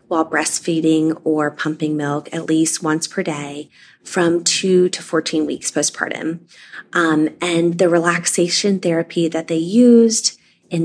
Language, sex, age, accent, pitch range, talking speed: English, female, 20-39, American, 160-195 Hz, 140 wpm